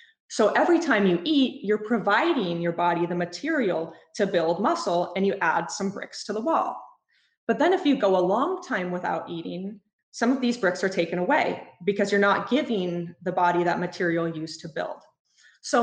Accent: American